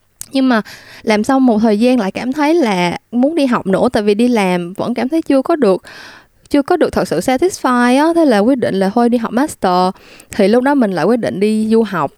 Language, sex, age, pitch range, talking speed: Vietnamese, female, 20-39, 190-260 Hz, 250 wpm